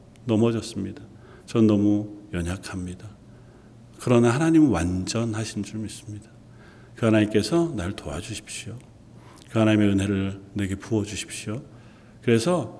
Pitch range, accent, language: 105-130 Hz, native, Korean